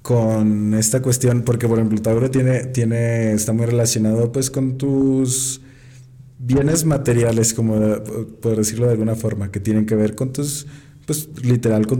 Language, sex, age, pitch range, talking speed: Spanish, male, 20-39, 110-125 Hz, 160 wpm